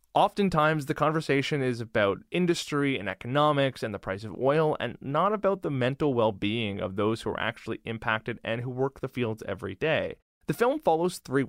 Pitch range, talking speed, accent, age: 120-165 Hz, 190 wpm, American, 20-39